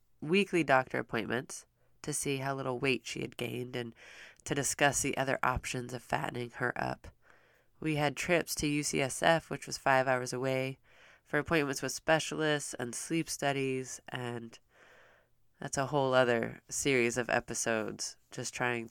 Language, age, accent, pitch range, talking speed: English, 20-39, American, 125-155 Hz, 150 wpm